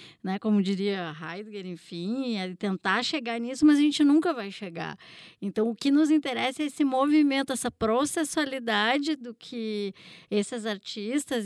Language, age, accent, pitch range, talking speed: Portuguese, 10-29, Brazilian, 225-295 Hz, 140 wpm